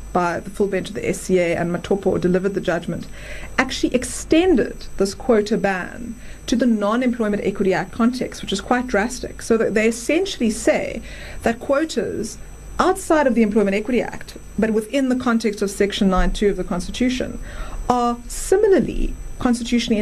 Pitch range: 200-255 Hz